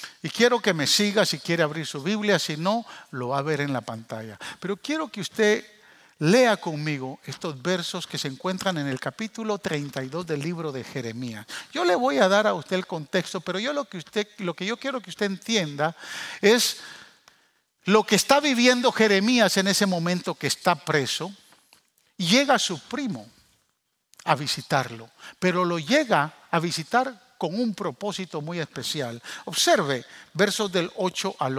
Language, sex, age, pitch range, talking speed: Spanish, male, 50-69, 155-210 Hz, 175 wpm